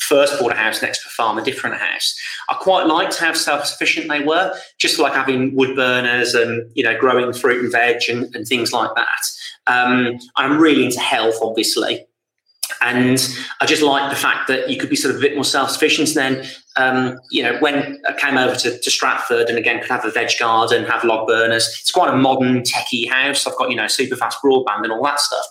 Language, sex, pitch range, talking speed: English, male, 120-165 Hz, 225 wpm